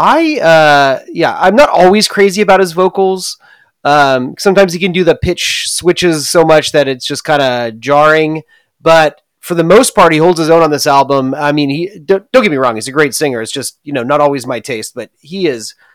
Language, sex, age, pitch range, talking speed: English, male, 30-49, 135-175 Hz, 230 wpm